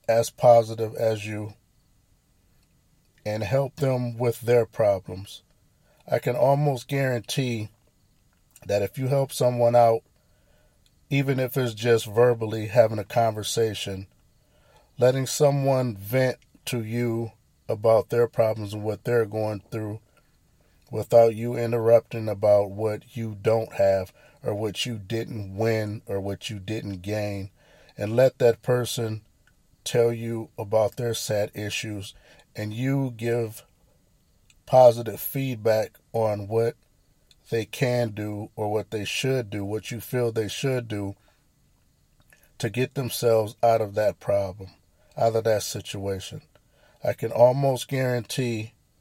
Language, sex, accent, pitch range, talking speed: English, male, American, 105-120 Hz, 130 wpm